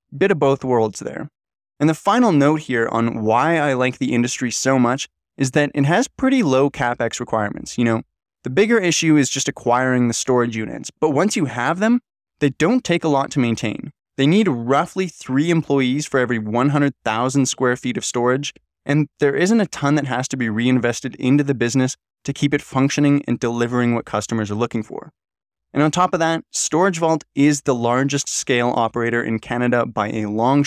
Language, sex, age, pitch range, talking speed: English, male, 20-39, 120-150 Hz, 200 wpm